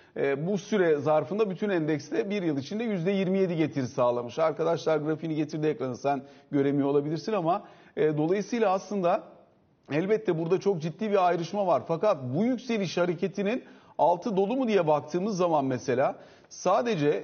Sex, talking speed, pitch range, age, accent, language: male, 145 wpm, 155-200 Hz, 40-59, native, Turkish